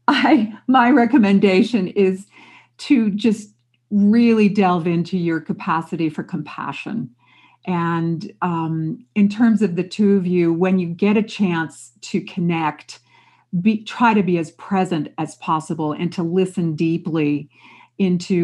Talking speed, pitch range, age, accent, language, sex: 130 wpm, 160-195 Hz, 50-69, American, English, female